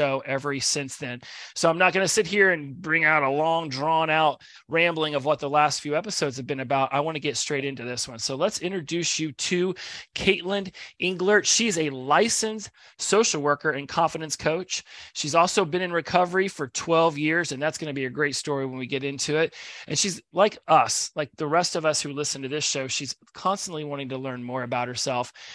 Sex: male